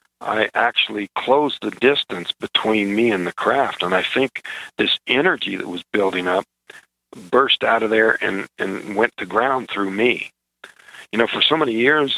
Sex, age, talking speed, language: male, 50-69, 175 wpm, English